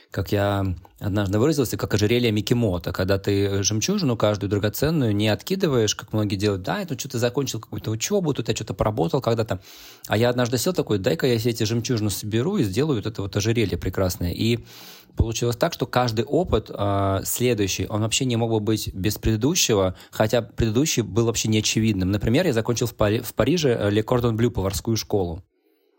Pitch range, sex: 95-120 Hz, male